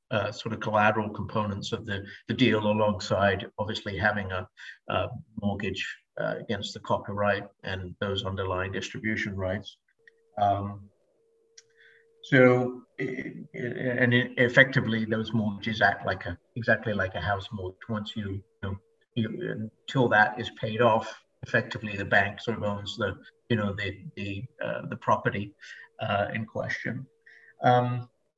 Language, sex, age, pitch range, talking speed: English, male, 50-69, 105-130 Hz, 145 wpm